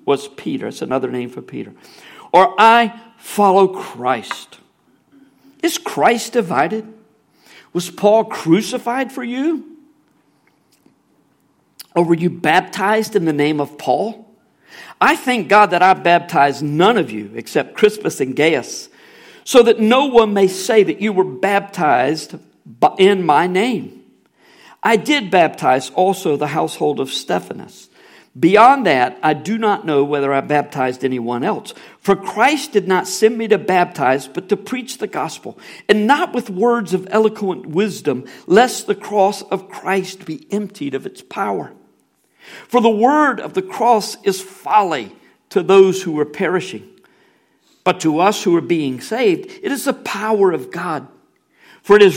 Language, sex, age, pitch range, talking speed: English, male, 50-69, 175-235 Hz, 150 wpm